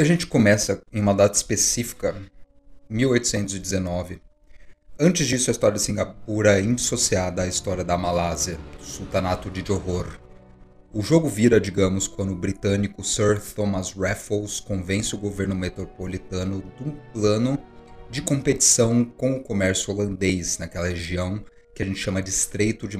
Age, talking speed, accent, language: 30-49, 145 wpm, Brazilian, Portuguese